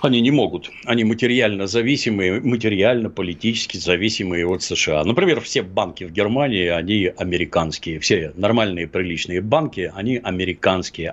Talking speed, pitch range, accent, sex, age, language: 120 wpm, 95-125 Hz, native, male, 60-79, Russian